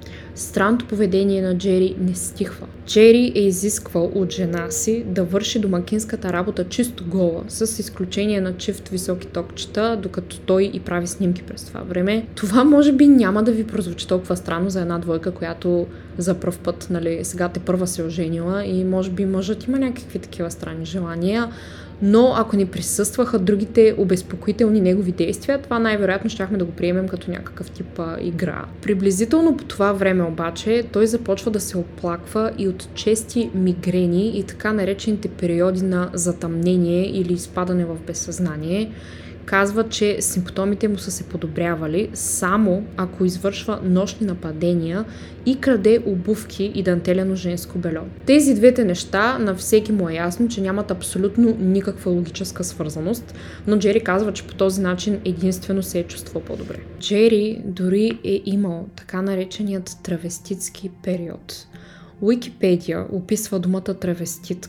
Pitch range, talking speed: 180-210 Hz, 150 wpm